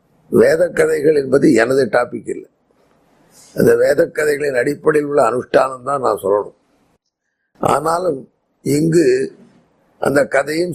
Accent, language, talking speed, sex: native, Tamil, 100 wpm, male